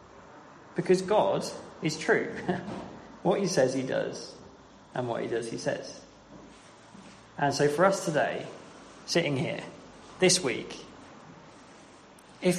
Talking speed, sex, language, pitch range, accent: 120 wpm, male, English, 135-165 Hz, British